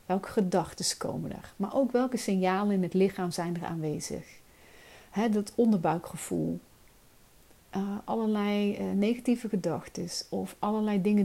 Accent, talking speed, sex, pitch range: Dutch, 135 wpm, female, 175-225 Hz